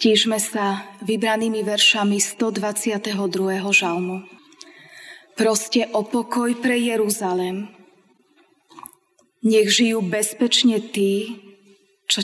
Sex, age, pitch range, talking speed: female, 20-39, 190-235 Hz, 80 wpm